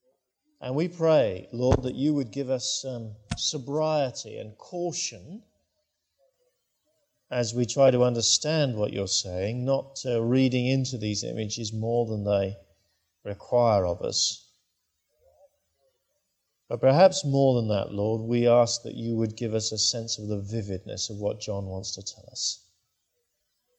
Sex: male